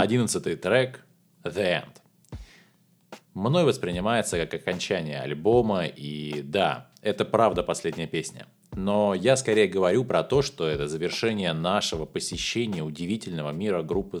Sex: male